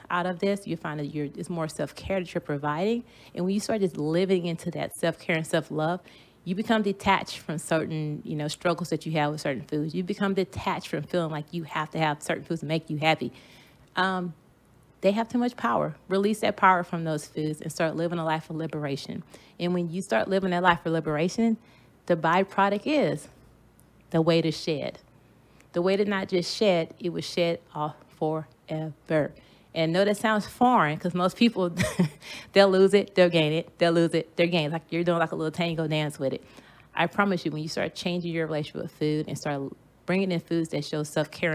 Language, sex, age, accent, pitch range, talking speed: English, female, 30-49, American, 155-185 Hz, 215 wpm